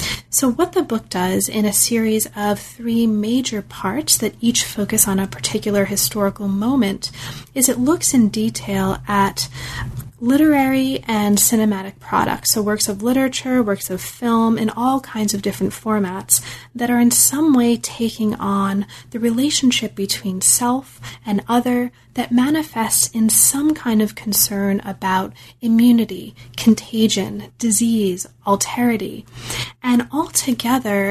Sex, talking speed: female, 135 wpm